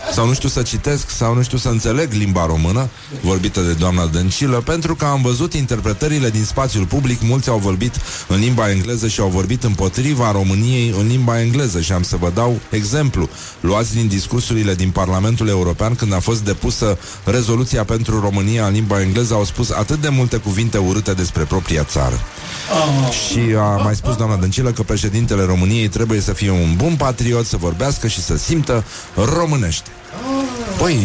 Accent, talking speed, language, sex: native, 180 wpm, Romanian, male